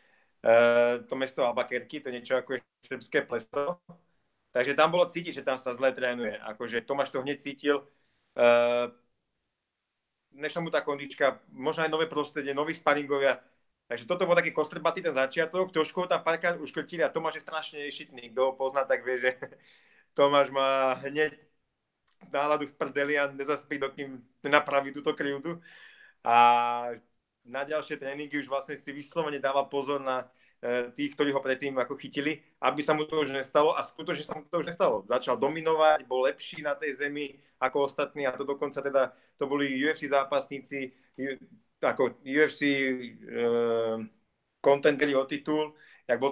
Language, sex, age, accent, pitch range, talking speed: Czech, male, 30-49, native, 130-155 Hz, 160 wpm